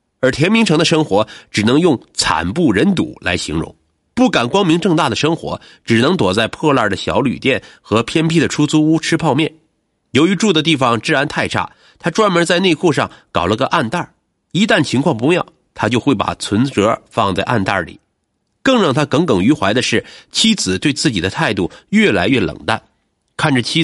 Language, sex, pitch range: Chinese, male, 110-170 Hz